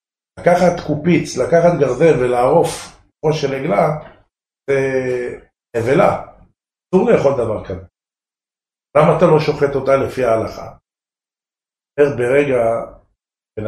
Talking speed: 105 wpm